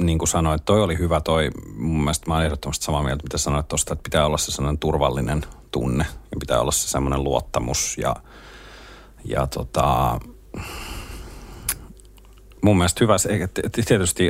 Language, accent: Finnish, native